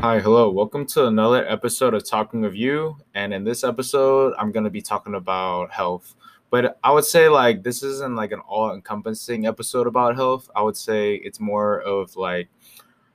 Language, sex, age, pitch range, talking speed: English, male, 20-39, 95-125 Hz, 185 wpm